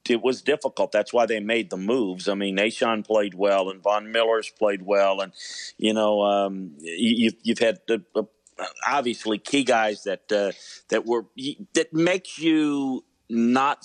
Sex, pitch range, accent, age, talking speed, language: male, 110-130 Hz, American, 50-69, 170 wpm, English